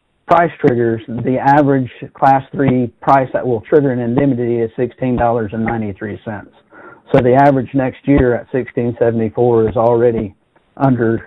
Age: 50-69